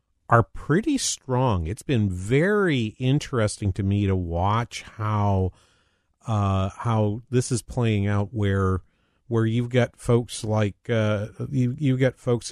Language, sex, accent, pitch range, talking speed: English, male, American, 95-125 Hz, 140 wpm